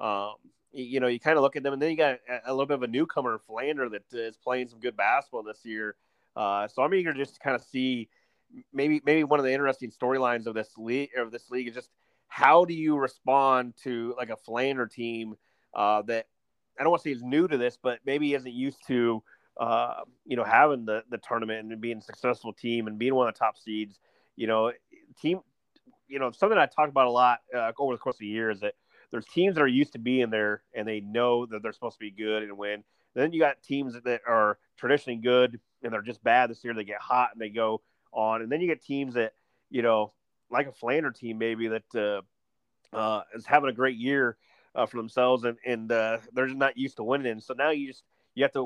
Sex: male